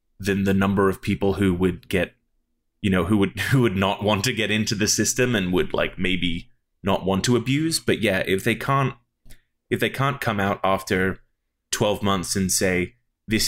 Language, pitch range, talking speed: English, 90-105 Hz, 200 wpm